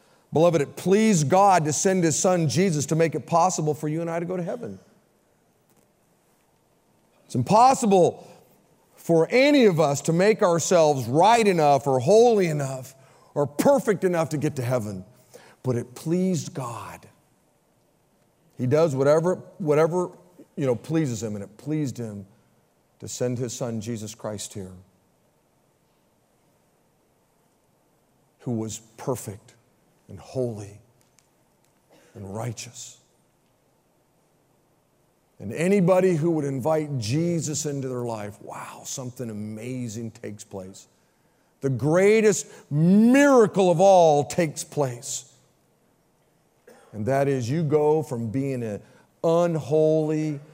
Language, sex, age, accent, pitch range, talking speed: English, male, 50-69, American, 125-175 Hz, 120 wpm